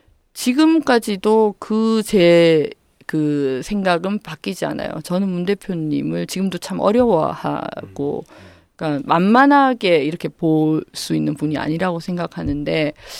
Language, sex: Korean, female